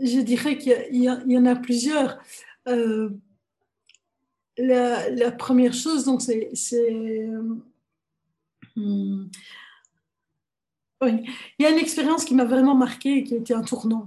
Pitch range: 230-260 Hz